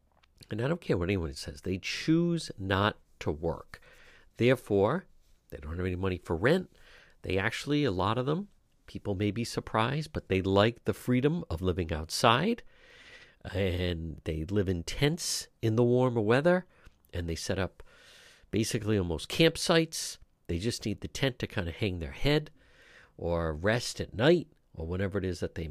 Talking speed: 175 wpm